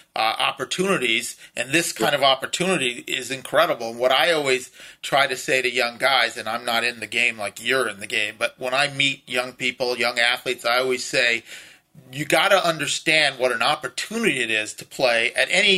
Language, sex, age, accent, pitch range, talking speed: English, male, 40-59, American, 125-180 Hz, 200 wpm